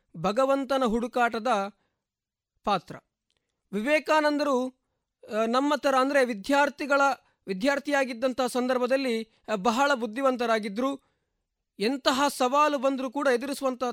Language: Kannada